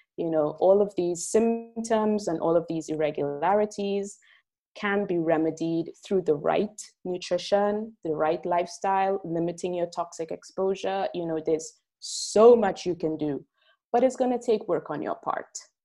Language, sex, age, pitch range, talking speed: English, female, 20-39, 170-215 Hz, 160 wpm